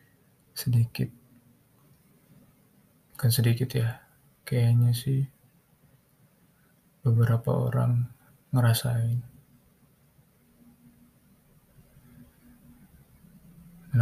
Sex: male